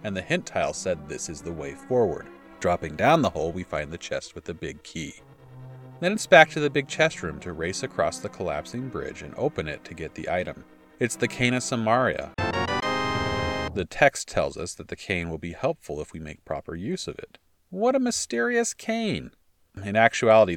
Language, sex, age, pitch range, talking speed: English, male, 40-59, 85-125 Hz, 205 wpm